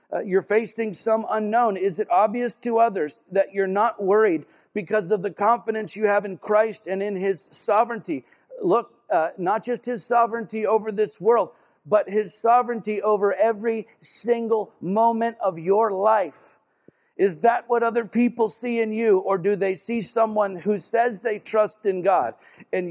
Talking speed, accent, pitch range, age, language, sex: 170 wpm, American, 190-225 Hz, 50-69, English, male